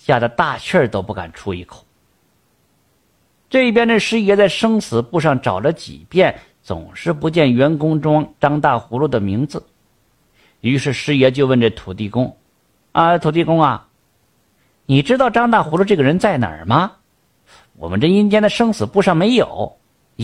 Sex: male